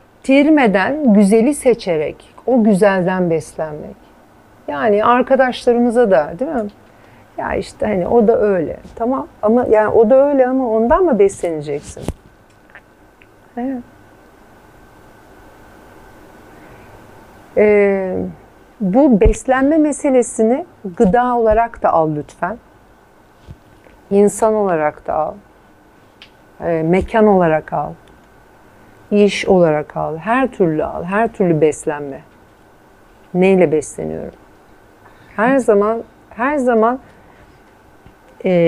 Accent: native